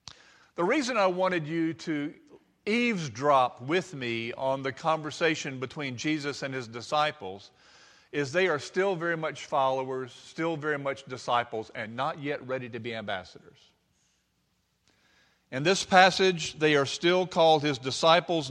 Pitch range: 130-175 Hz